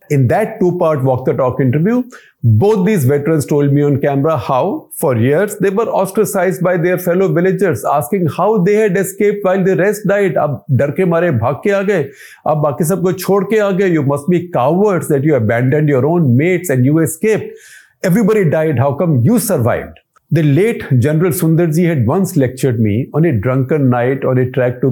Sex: male